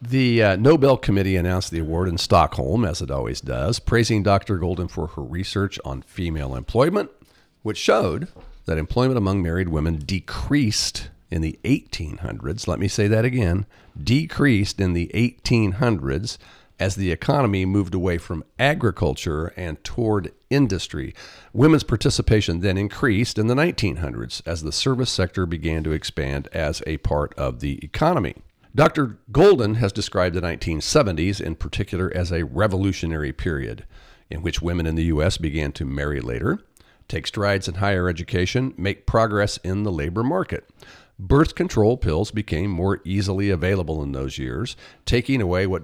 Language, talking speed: English, 155 wpm